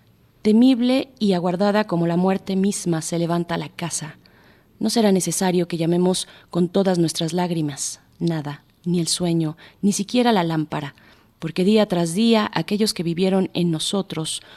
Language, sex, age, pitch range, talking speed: Spanish, female, 30-49, 160-195 Hz, 155 wpm